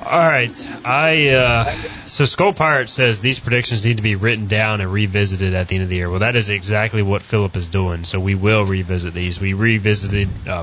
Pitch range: 100-120 Hz